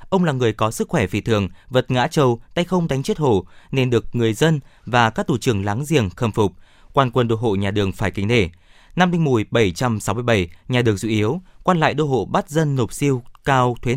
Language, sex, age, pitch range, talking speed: Vietnamese, male, 20-39, 110-150 Hz, 235 wpm